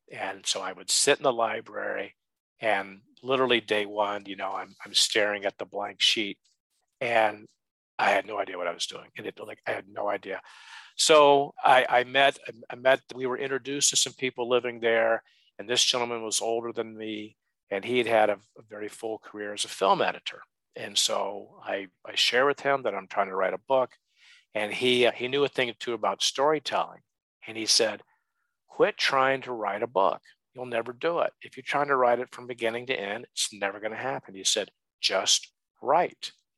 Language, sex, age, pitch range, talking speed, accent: English, male, 50-69, 105-130 Hz, 205 wpm, American